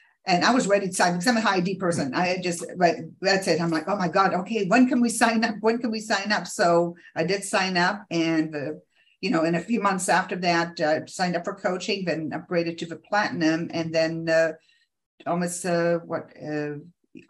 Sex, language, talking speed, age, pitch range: female, English, 220 wpm, 50-69, 165-210 Hz